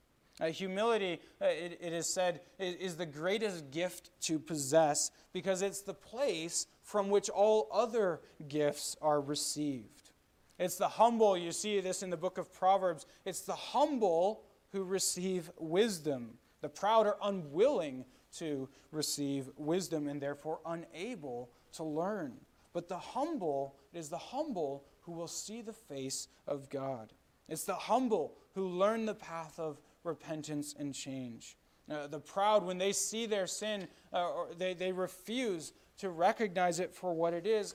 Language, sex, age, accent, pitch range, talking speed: English, male, 20-39, American, 155-205 Hz, 155 wpm